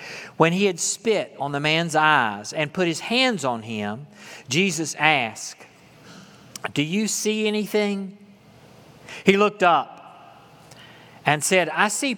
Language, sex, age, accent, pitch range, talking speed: English, male, 50-69, American, 125-190 Hz, 135 wpm